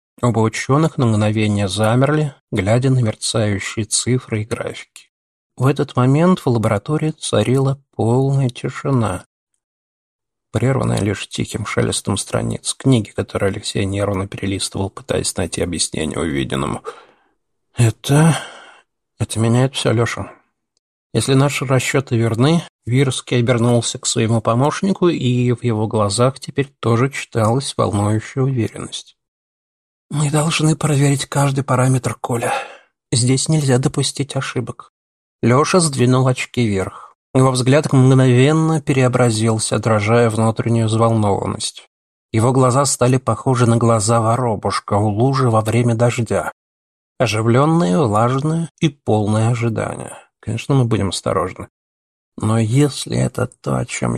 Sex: male